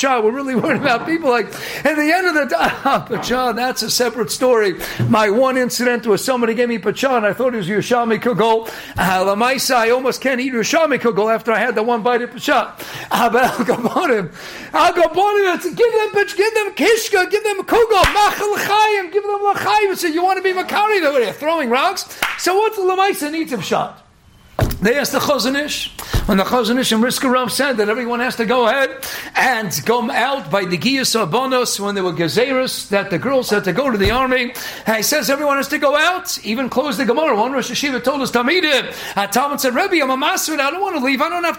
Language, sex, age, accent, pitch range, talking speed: English, male, 50-69, American, 225-315 Hz, 215 wpm